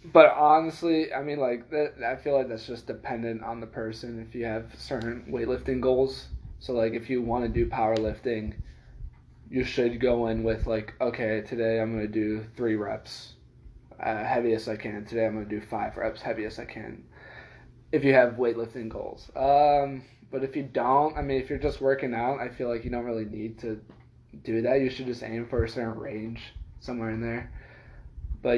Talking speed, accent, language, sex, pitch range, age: 200 wpm, American, English, male, 115-135 Hz, 20-39